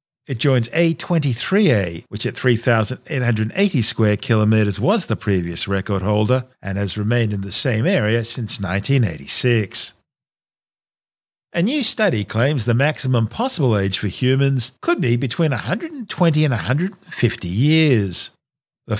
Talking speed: 125 wpm